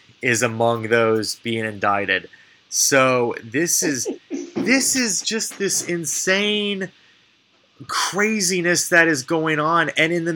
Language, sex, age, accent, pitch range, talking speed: English, male, 20-39, American, 130-205 Hz, 120 wpm